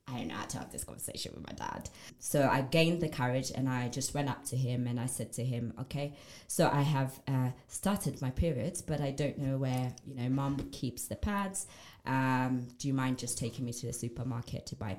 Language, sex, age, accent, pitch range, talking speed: English, female, 20-39, British, 130-150 Hz, 235 wpm